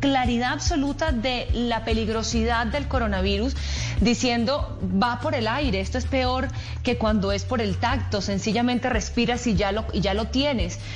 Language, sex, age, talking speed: Spanish, female, 30-49, 165 wpm